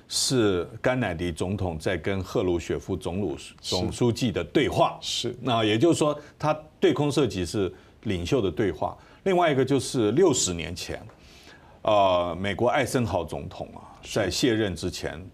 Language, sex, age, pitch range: Chinese, male, 50-69, 90-135 Hz